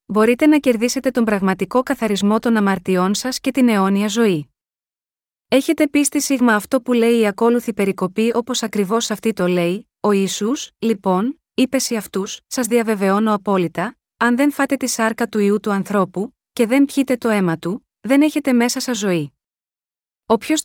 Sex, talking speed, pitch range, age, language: female, 165 wpm, 200-255 Hz, 20-39, Greek